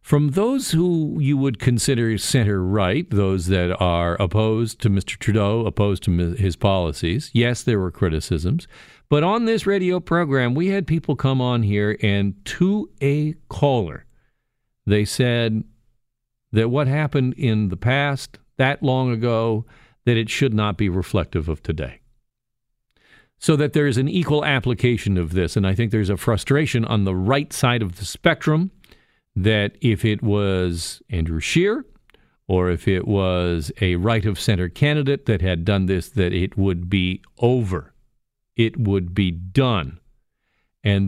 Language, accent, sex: English, American, male